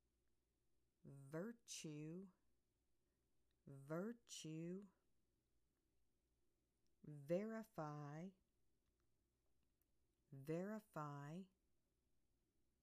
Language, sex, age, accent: English, female, 50-69, American